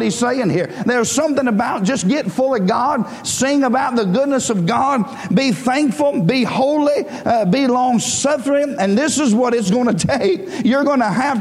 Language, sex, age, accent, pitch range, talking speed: English, male, 50-69, American, 195-235 Hz, 195 wpm